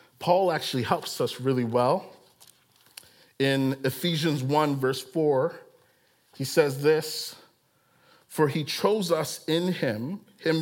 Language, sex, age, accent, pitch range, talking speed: English, male, 40-59, American, 125-165 Hz, 120 wpm